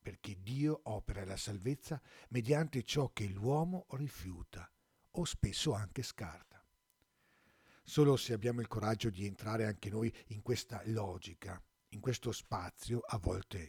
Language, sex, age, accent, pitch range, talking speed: Italian, male, 50-69, native, 100-135 Hz, 135 wpm